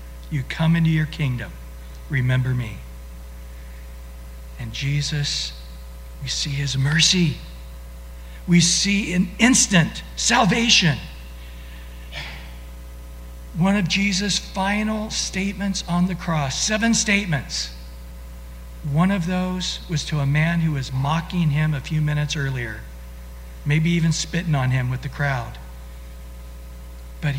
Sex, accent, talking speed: male, American, 115 wpm